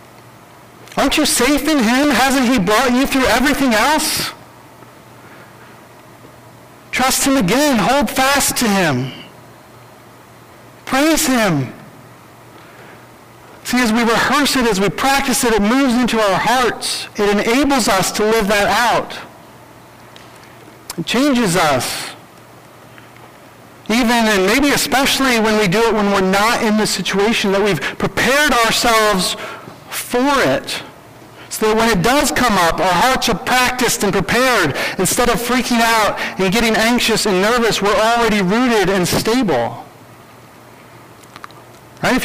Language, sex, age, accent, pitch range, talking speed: English, male, 50-69, American, 195-250 Hz, 135 wpm